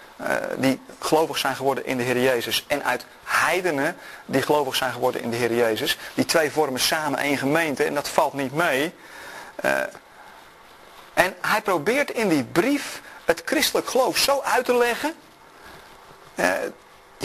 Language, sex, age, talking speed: Dutch, male, 40-59, 160 wpm